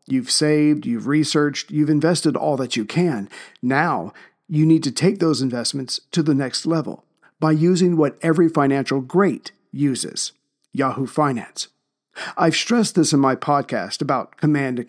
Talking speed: 155 wpm